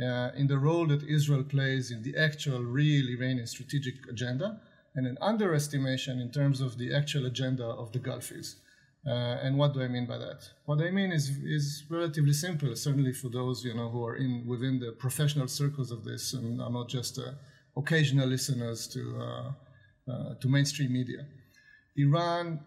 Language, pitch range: English, 125-150 Hz